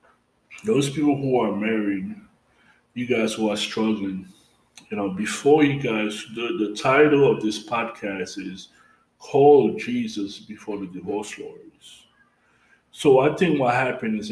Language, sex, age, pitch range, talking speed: English, male, 20-39, 105-135 Hz, 140 wpm